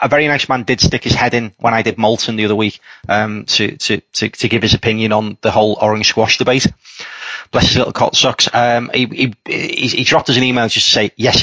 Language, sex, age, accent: English, male, 30-49, British